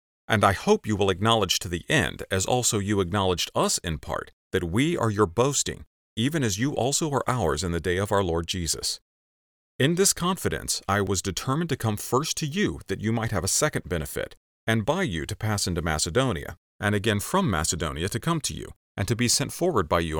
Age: 40-59